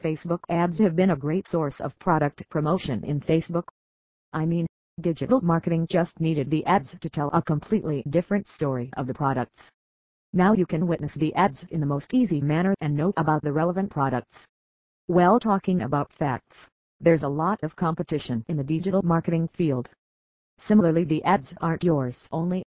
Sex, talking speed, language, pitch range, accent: female, 175 wpm, English, 145-180 Hz, American